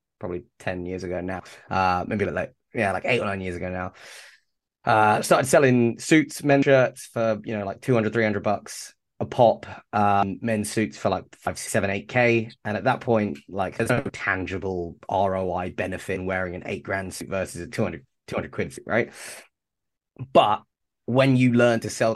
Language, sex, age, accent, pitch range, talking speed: English, male, 20-39, British, 95-115 Hz, 185 wpm